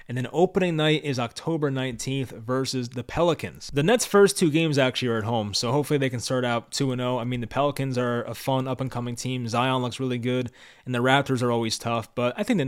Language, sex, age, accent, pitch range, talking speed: English, male, 20-39, American, 120-145 Hz, 230 wpm